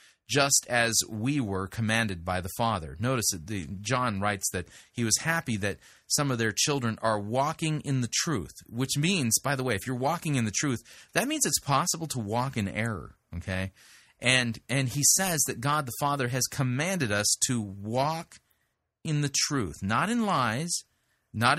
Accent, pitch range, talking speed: American, 110-150 Hz, 185 wpm